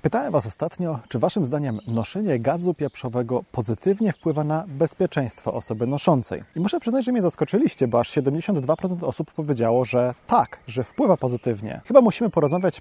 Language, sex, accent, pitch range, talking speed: Polish, male, native, 125-170 Hz, 160 wpm